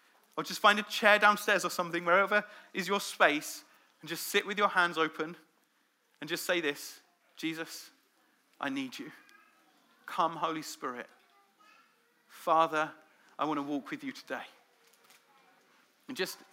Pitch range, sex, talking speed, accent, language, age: 160-210 Hz, male, 145 wpm, British, English, 40-59